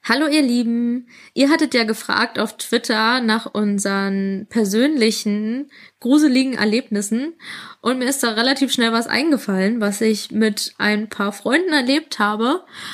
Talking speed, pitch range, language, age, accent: 140 wpm, 210-270 Hz, German, 20-39, German